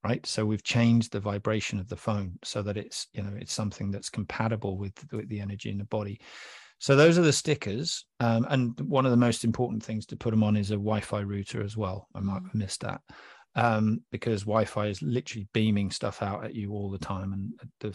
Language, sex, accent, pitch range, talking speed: English, male, British, 105-120 Hz, 225 wpm